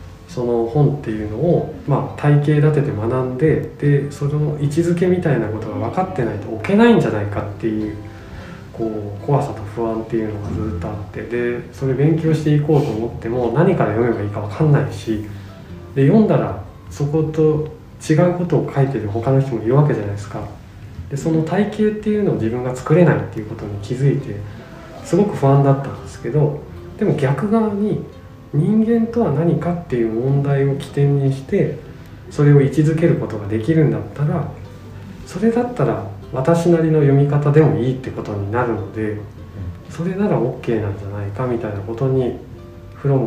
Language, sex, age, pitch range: Japanese, male, 20-39, 110-155 Hz